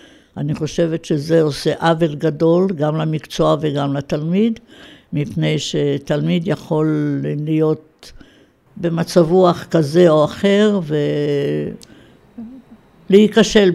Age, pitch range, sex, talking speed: 70-89, 150-175 Hz, female, 85 wpm